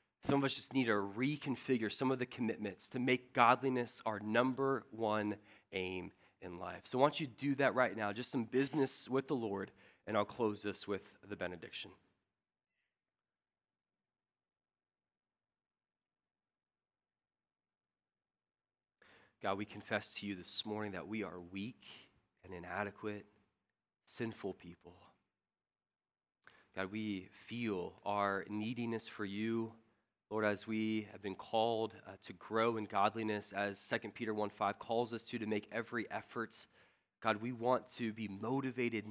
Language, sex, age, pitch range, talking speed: English, male, 30-49, 105-130 Hz, 140 wpm